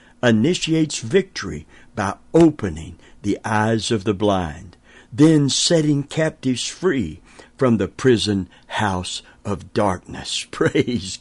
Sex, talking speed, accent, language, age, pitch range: male, 105 wpm, American, English, 60-79, 105-135 Hz